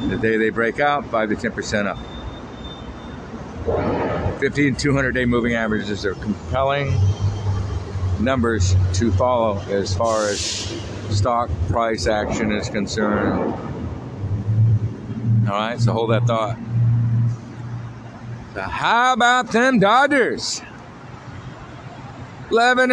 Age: 60-79